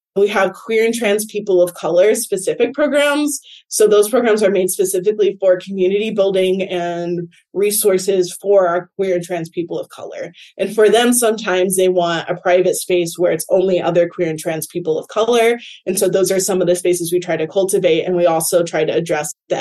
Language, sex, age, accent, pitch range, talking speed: English, female, 20-39, American, 175-225 Hz, 205 wpm